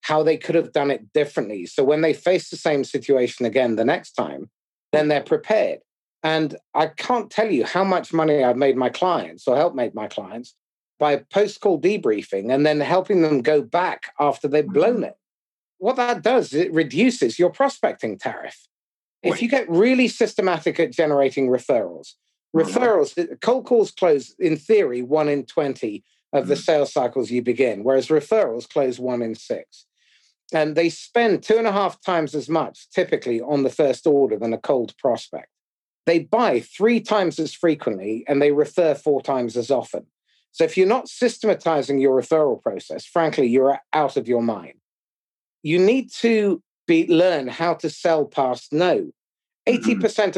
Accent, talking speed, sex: British, 170 wpm, male